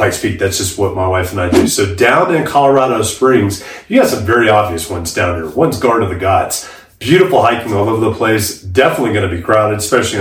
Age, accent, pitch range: 30-49, American, 100-130 Hz